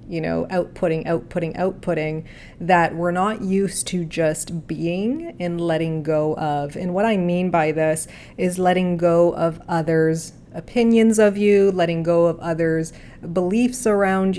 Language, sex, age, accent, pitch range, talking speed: English, female, 30-49, American, 170-190 Hz, 150 wpm